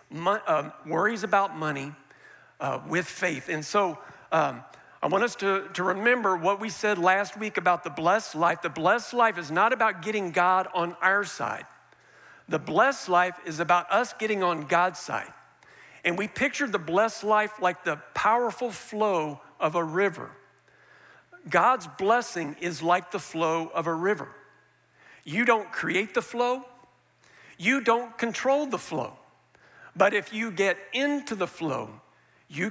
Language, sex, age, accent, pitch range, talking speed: English, male, 50-69, American, 175-230 Hz, 160 wpm